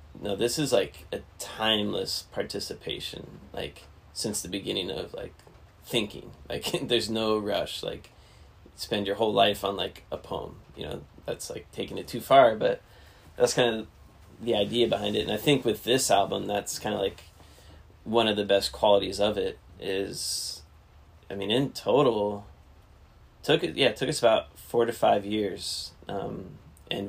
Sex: male